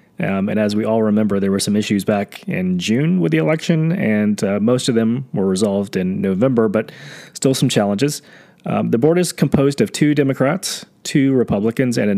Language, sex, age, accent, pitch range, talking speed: English, male, 30-49, American, 105-160 Hz, 200 wpm